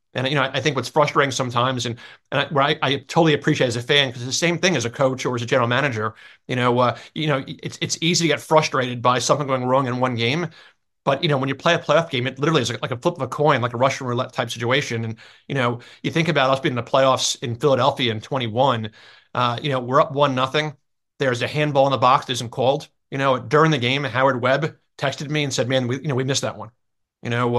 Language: English